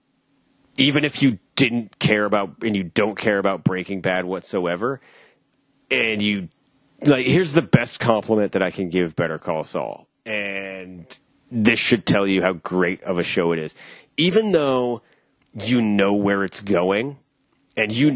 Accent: American